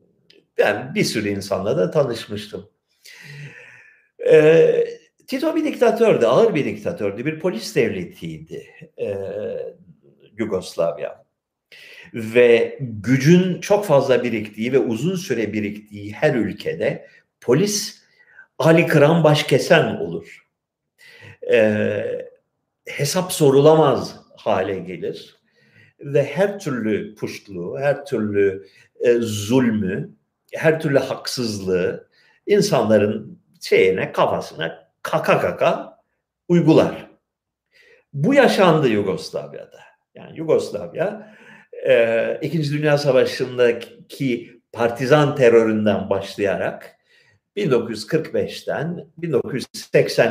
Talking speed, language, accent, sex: 75 wpm, Turkish, native, male